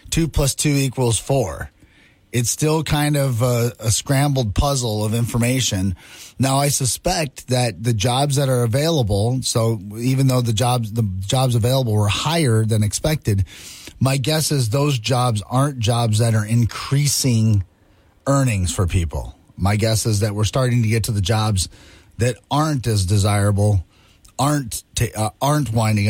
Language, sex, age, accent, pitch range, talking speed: English, male, 30-49, American, 100-135 Hz, 160 wpm